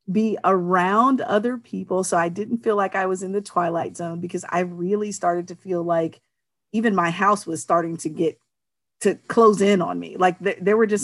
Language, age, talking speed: English, 40-59, 205 wpm